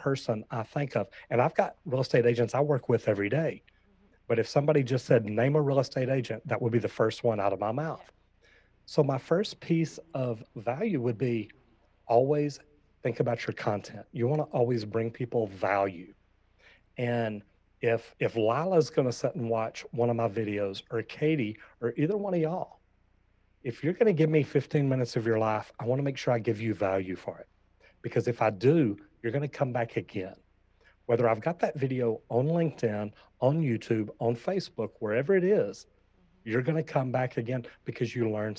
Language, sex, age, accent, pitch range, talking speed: English, male, 40-59, American, 110-145 Hz, 200 wpm